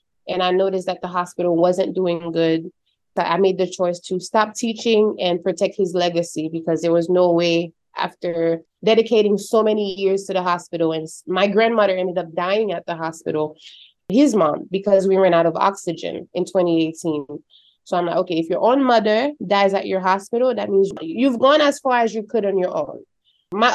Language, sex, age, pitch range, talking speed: English, female, 20-39, 175-215 Hz, 195 wpm